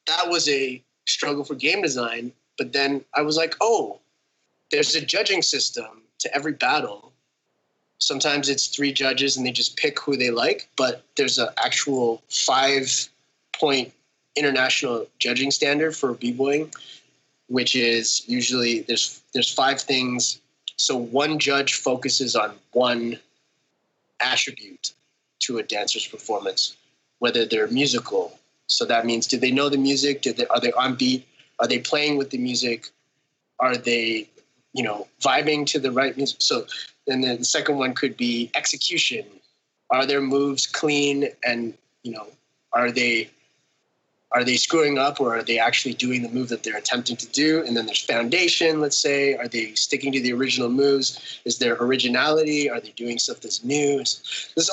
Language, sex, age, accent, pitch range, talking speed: English, male, 20-39, American, 120-145 Hz, 160 wpm